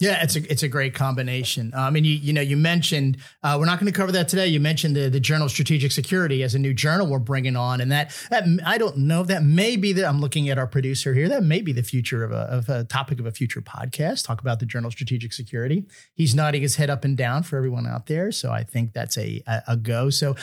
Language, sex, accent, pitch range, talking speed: English, male, American, 130-160 Hz, 275 wpm